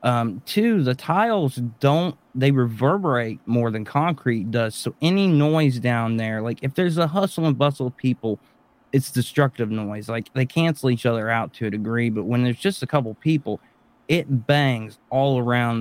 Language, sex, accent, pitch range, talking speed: English, male, American, 115-140 Hz, 180 wpm